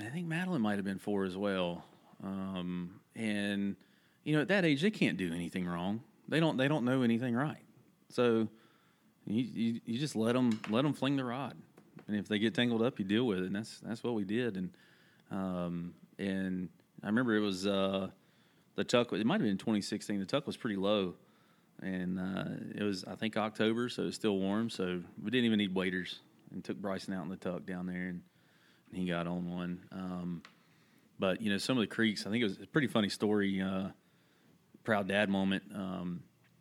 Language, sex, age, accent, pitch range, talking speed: English, male, 30-49, American, 90-110 Hz, 210 wpm